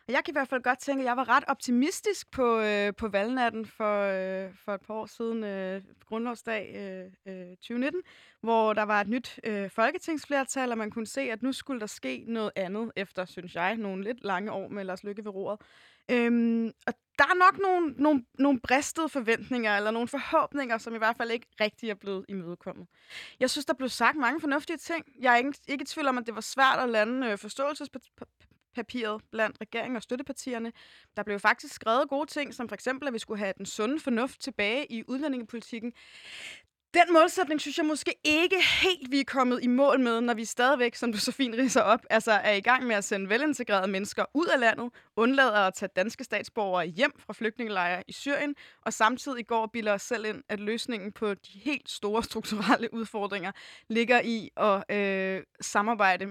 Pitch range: 205-265 Hz